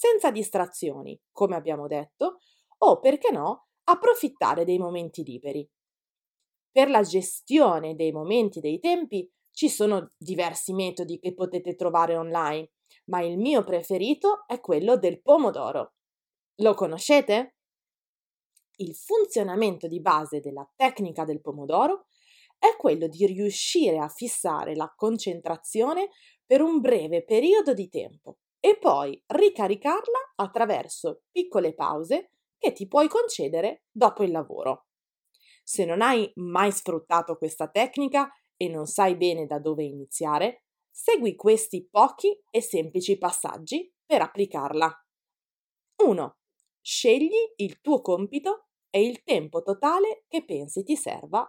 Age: 20-39